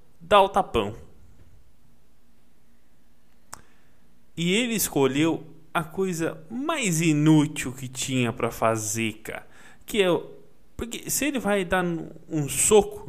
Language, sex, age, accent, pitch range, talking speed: Portuguese, male, 20-39, Brazilian, 120-160 Hz, 115 wpm